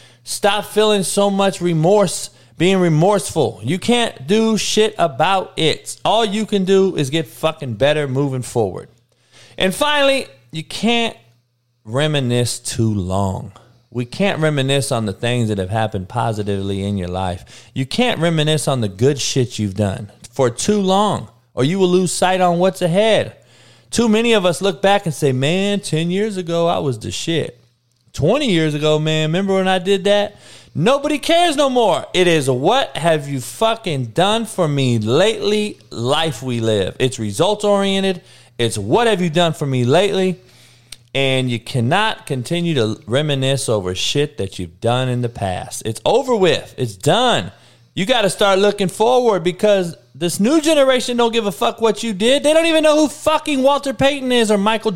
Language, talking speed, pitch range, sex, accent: English, 175 wpm, 125-205 Hz, male, American